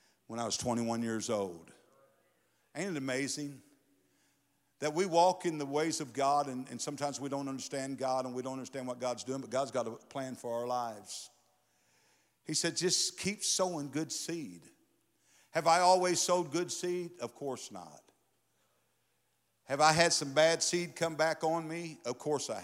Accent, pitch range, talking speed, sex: American, 140-195 Hz, 180 wpm, male